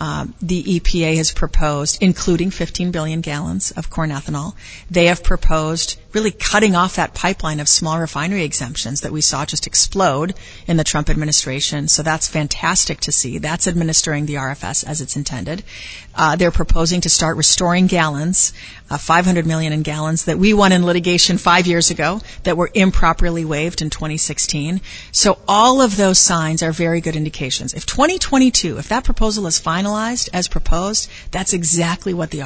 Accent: American